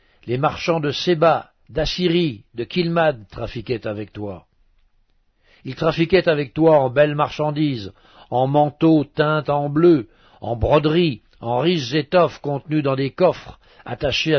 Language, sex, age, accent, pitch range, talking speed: French, male, 60-79, French, 125-155 Hz, 135 wpm